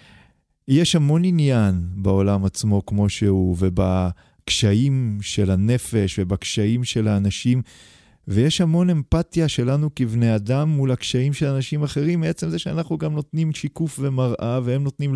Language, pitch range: Hebrew, 100-135 Hz